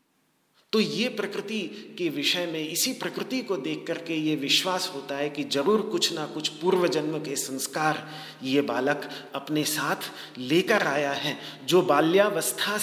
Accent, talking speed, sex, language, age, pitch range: native, 155 wpm, male, Hindi, 40-59, 150-200 Hz